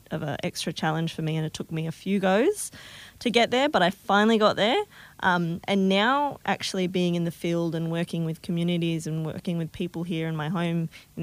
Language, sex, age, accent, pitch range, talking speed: English, female, 20-39, Australian, 160-185 Hz, 225 wpm